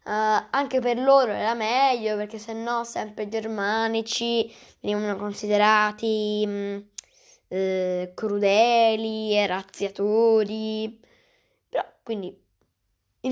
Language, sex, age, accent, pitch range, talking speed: Italian, female, 10-29, native, 190-240 Hz, 100 wpm